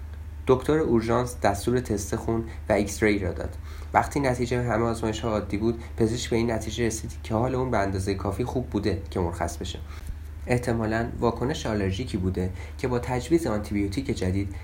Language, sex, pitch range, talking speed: Persian, male, 90-120 Hz, 165 wpm